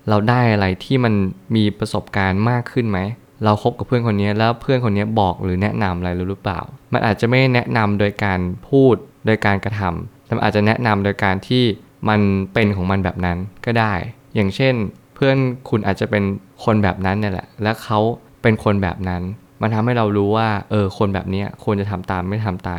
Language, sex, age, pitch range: Thai, male, 20-39, 95-120 Hz